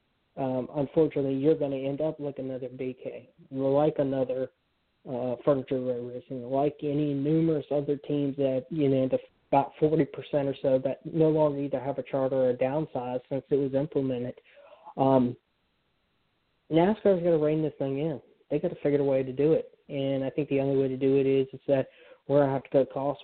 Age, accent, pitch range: 20-39, American, 135-150 Hz